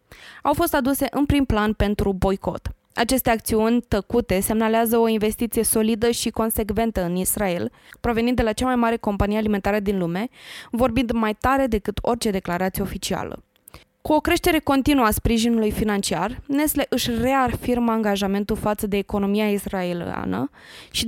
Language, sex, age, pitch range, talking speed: Romanian, female, 20-39, 200-235 Hz, 150 wpm